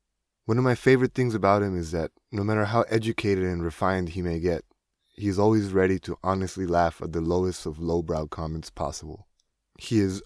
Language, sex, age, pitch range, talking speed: English, male, 20-39, 85-105 Hz, 200 wpm